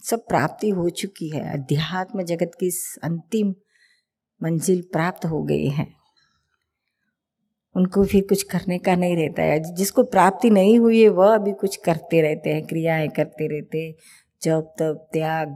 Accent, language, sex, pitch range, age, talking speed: native, Hindi, female, 160-205 Hz, 50-69, 150 wpm